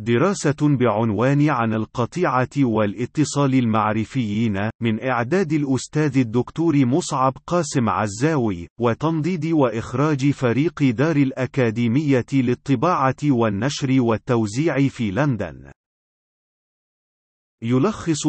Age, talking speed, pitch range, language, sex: 40-59, 80 wpm, 115-145 Hz, Arabic, male